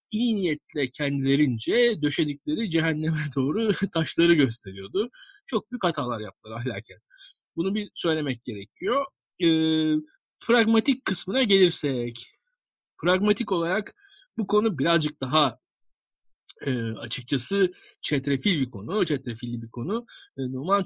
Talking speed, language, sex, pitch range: 105 wpm, Turkish, male, 135-200 Hz